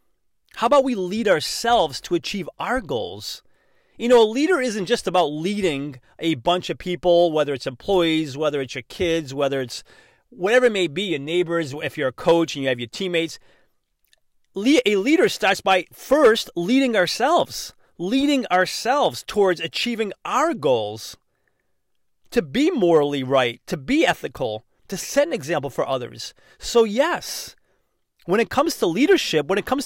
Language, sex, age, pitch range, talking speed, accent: English, male, 30-49, 160-235 Hz, 165 wpm, American